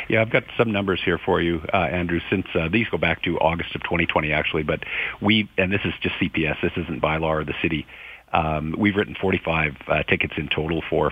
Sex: male